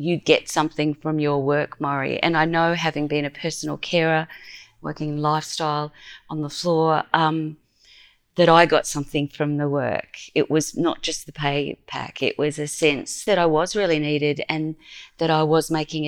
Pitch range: 150-175 Hz